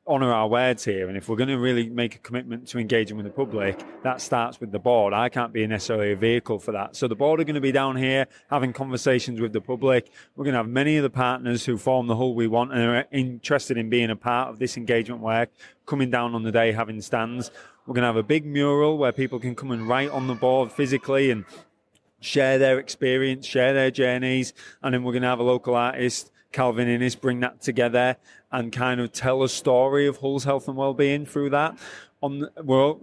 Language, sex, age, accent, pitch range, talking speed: English, male, 20-39, British, 115-135 Hz, 235 wpm